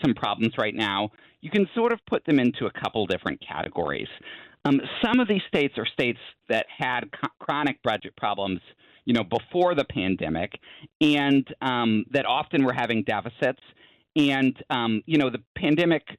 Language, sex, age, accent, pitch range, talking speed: English, male, 40-59, American, 105-145 Hz, 165 wpm